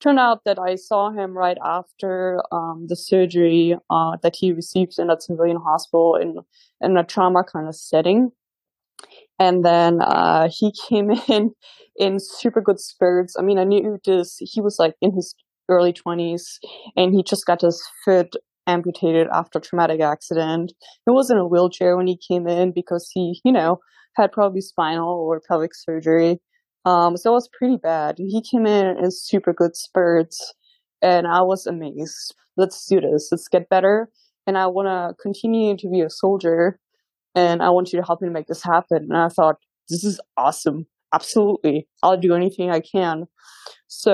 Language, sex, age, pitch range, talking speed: English, female, 20-39, 170-200 Hz, 180 wpm